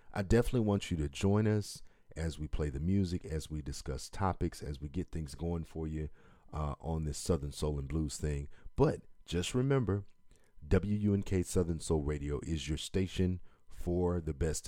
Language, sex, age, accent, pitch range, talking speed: English, male, 40-59, American, 75-95 Hz, 180 wpm